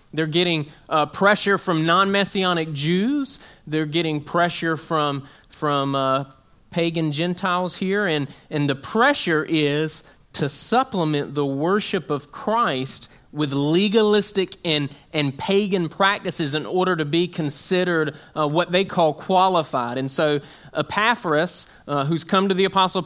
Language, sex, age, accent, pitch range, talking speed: English, male, 30-49, American, 150-185 Hz, 135 wpm